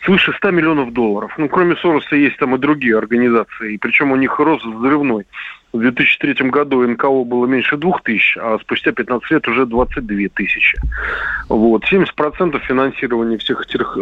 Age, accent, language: 20-39, native, Russian